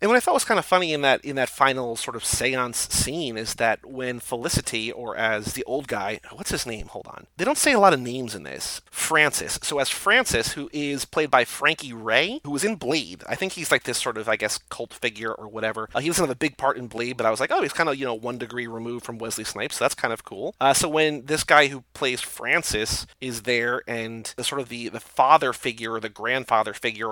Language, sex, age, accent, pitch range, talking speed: English, male, 30-49, American, 120-155 Hz, 265 wpm